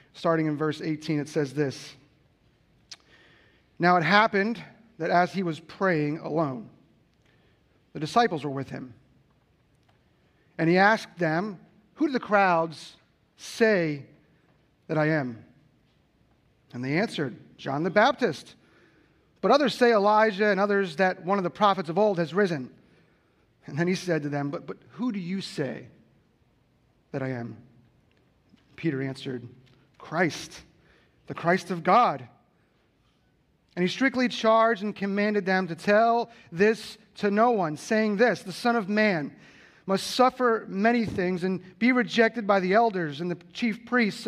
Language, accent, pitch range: English, American, 150-205 Hz